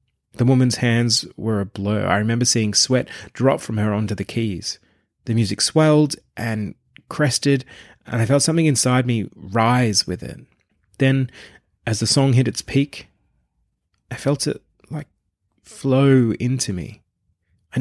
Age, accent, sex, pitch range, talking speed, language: 30-49, Australian, male, 100-125 Hz, 150 wpm, English